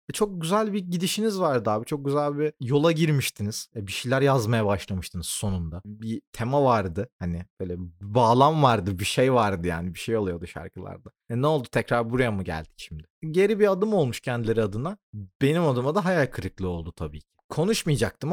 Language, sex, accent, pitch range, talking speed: Turkish, male, native, 95-150 Hz, 180 wpm